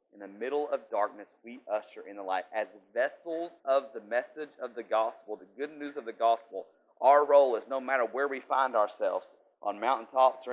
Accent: American